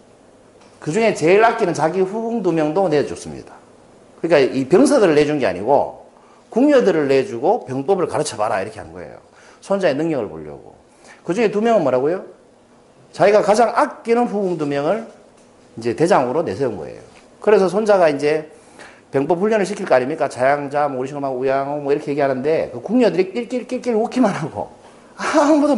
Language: Korean